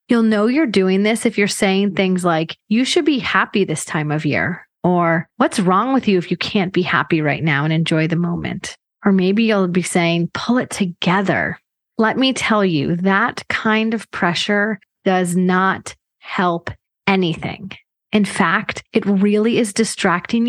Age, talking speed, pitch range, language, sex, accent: 30-49, 175 wpm, 175-210 Hz, English, female, American